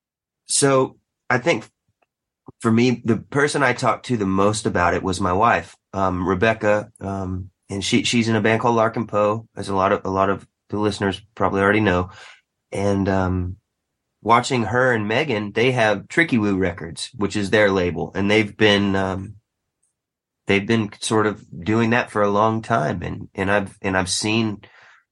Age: 30-49